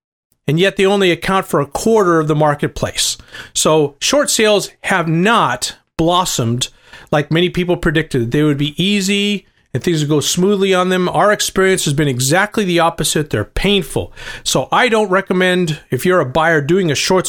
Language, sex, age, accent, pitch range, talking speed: English, male, 40-59, American, 140-185 Hz, 180 wpm